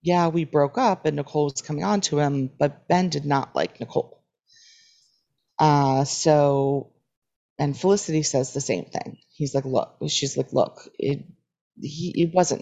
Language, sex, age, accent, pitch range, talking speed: English, female, 30-49, American, 140-180 Hz, 165 wpm